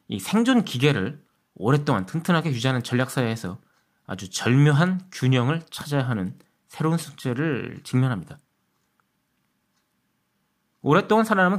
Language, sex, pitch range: Korean, male, 120-155 Hz